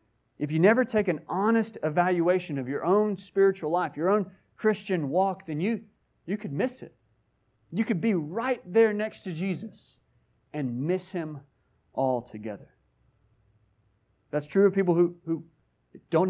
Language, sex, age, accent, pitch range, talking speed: English, male, 30-49, American, 140-200 Hz, 150 wpm